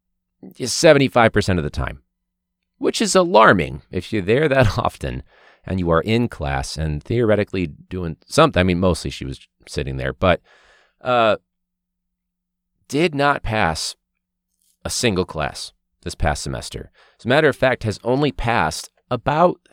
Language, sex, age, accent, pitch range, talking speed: English, male, 30-49, American, 90-115 Hz, 145 wpm